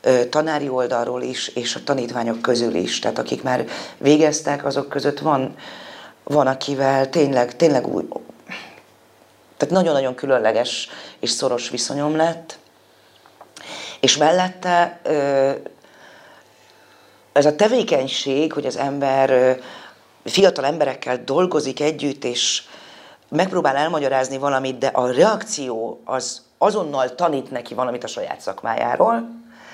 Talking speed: 110 wpm